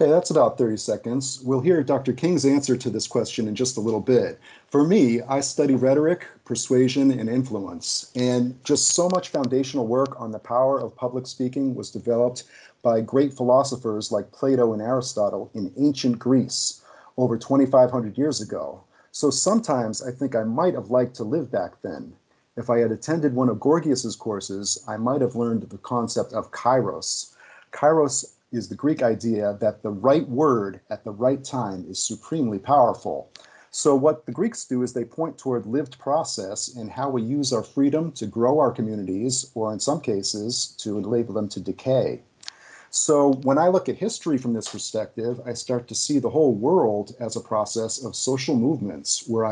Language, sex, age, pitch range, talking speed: English, male, 40-59, 115-135 Hz, 180 wpm